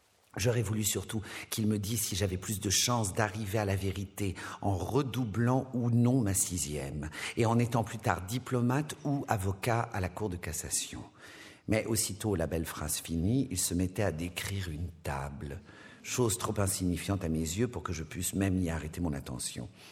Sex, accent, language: male, French, French